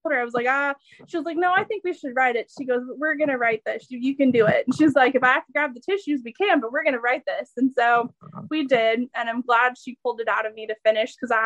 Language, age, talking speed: English, 20-39, 305 wpm